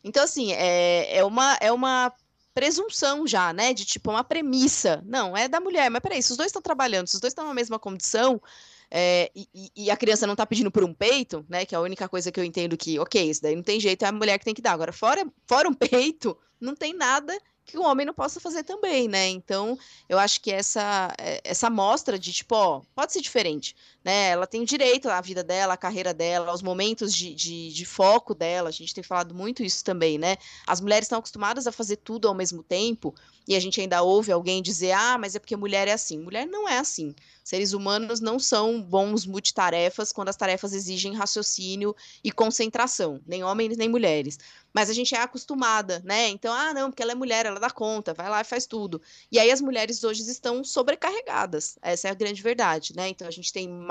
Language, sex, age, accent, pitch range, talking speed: Portuguese, female, 20-39, Brazilian, 185-245 Hz, 225 wpm